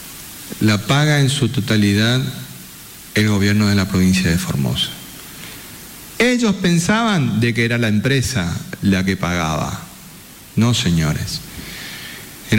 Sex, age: male, 40-59